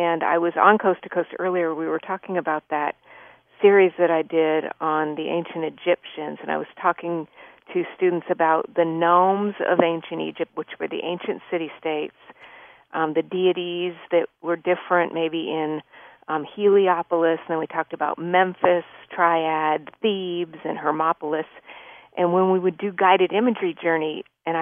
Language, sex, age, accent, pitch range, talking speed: English, female, 50-69, American, 160-185 Hz, 160 wpm